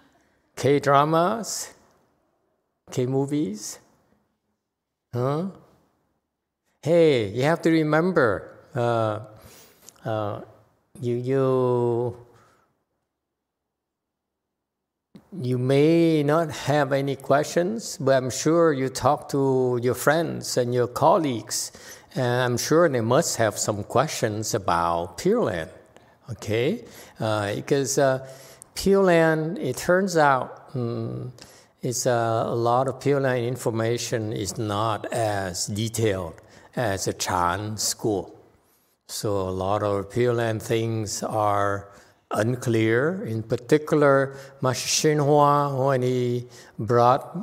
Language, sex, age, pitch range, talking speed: English, male, 60-79, 115-140 Hz, 100 wpm